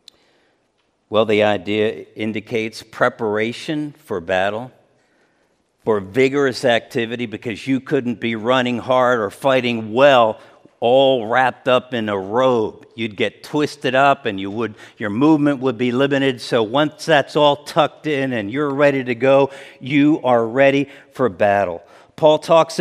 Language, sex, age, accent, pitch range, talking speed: English, male, 50-69, American, 125-175 Hz, 145 wpm